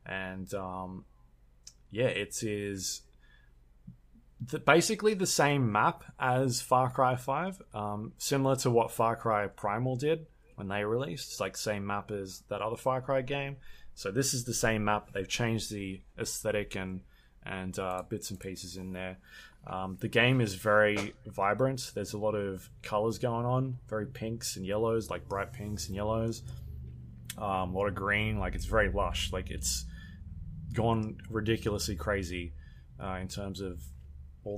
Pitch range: 90-115 Hz